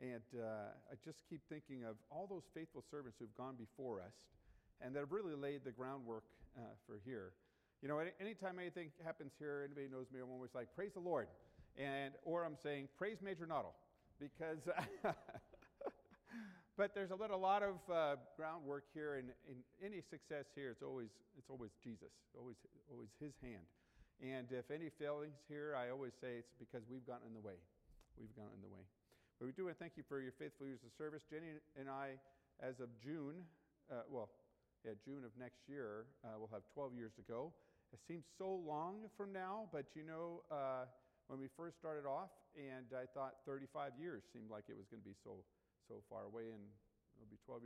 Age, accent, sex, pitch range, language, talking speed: 50-69, American, male, 120-160 Hz, English, 200 wpm